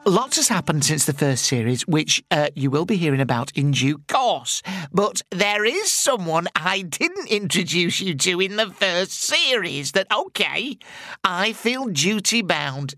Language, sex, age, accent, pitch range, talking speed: English, male, 50-69, British, 150-200 Hz, 160 wpm